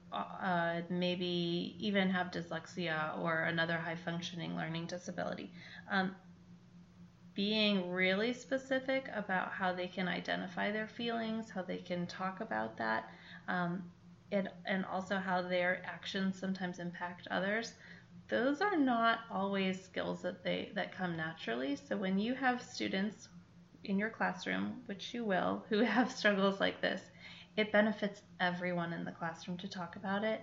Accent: American